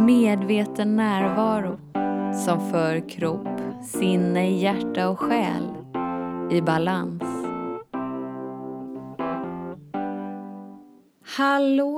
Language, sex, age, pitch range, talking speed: Swedish, female, 20-39, 160-215 Hz, 60 wpm